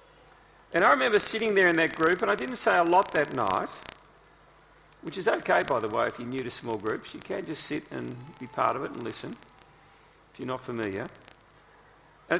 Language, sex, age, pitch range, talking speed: English, male, 40-59, 130-195 Hz, 215 wpm